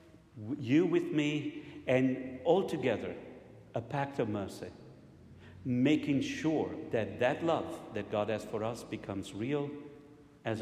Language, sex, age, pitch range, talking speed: English, male, 50-69, 100-140 Hz, 130 wpm